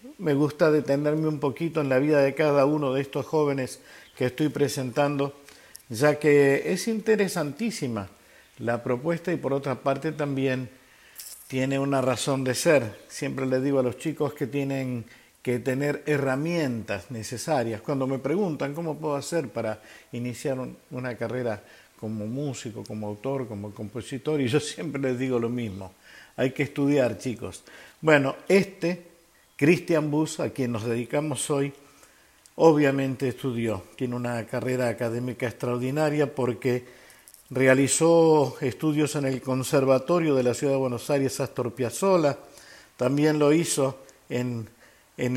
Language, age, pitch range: Spanish, 50-69, 125-150 Hz